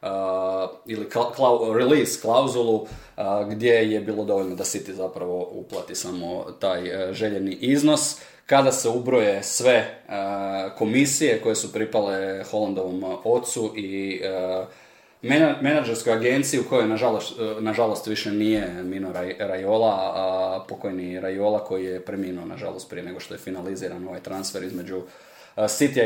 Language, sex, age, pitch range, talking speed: Croatian, male, 20-39, 95-120 Hz, 135 wpm